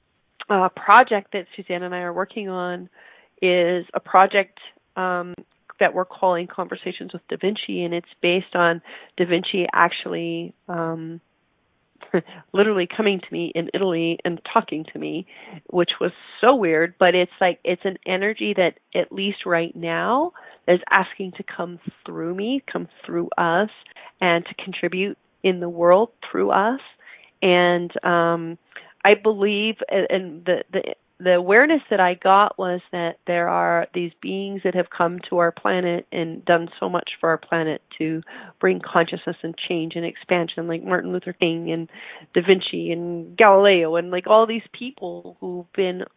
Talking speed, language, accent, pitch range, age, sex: 160 wpm, English, American, 170-190 Hz, 30-49, female